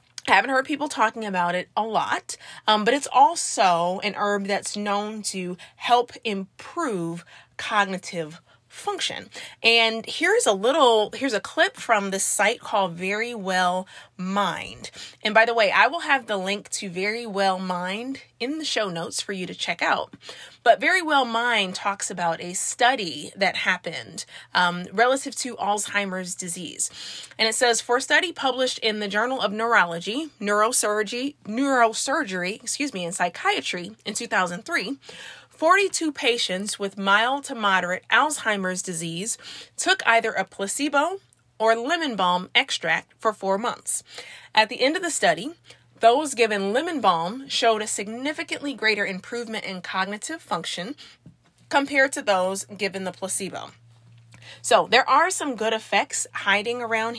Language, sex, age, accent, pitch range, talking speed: English, female, 30-49, American, 190-255 Hz, 150 wpm